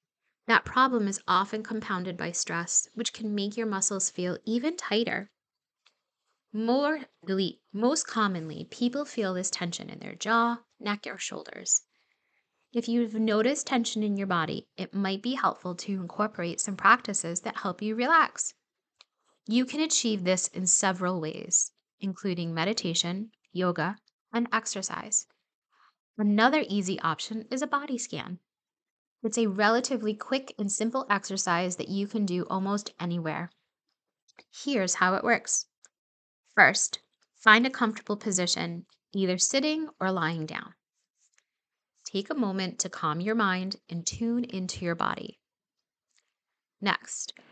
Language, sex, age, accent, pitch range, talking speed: English, female, 10-29, American, 180-230 Hz, 135 wpm